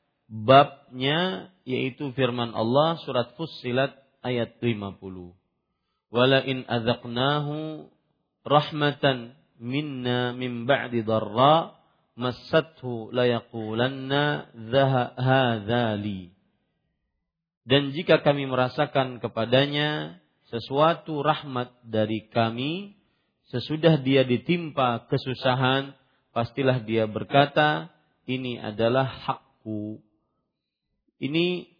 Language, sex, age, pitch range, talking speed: Malay, male, 40-59, 120-150 Hz, 75 wpm